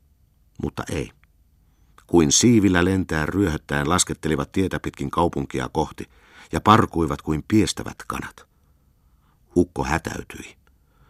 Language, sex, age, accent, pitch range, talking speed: Finnish, male, 50-69, native, 70-95 Hz, 95 wpm